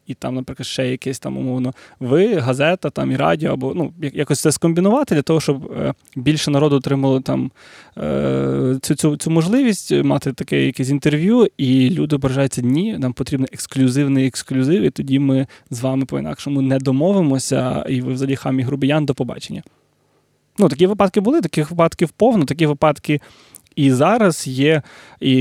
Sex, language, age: male, Ukrainian, 20-39